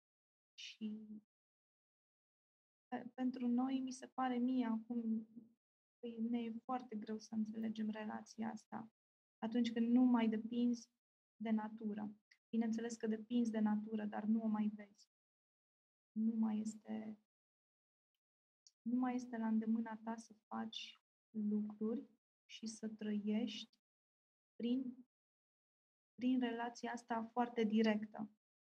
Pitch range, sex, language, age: 220-235 Hz, female, Romanian, 20-39